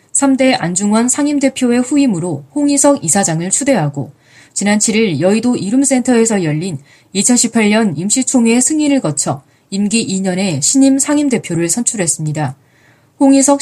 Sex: female